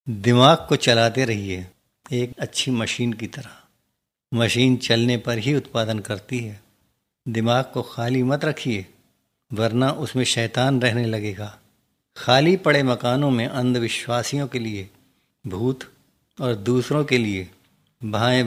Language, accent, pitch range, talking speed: Hindi, native, 110-130 Hz, 125 wpm